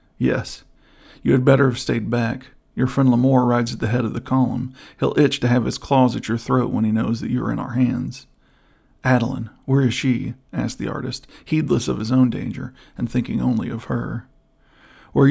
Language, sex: English, male